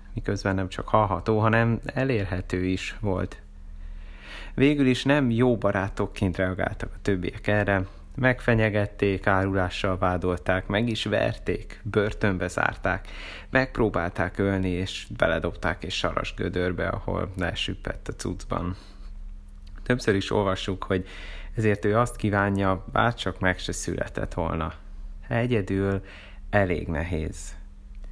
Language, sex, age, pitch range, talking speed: Hungarian, male, 30-49, 90-110 Hz, 110 wpm